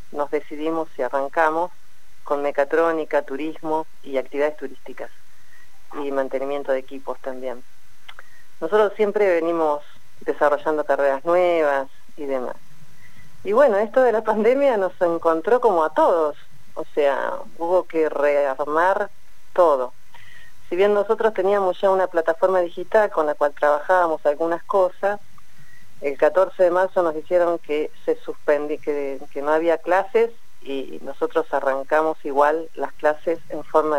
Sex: female